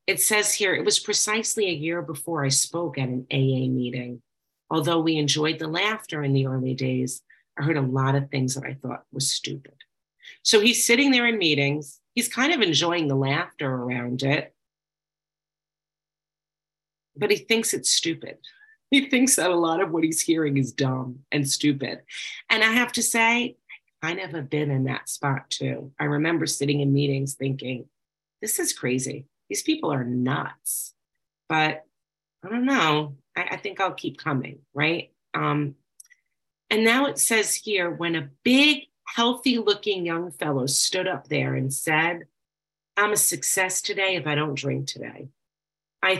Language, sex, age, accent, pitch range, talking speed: English, female, 40-59, American, 140-190 Hz, 170 wpm